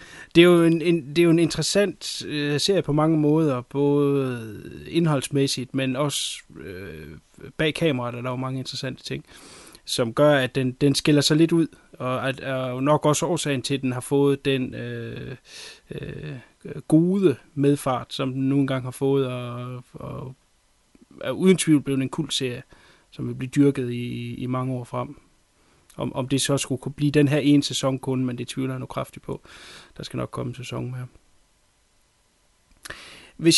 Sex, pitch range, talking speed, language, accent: male, 130-155 Hz, 185 wpm, Danish, native